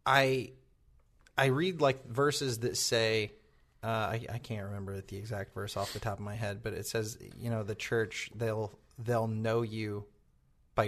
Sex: male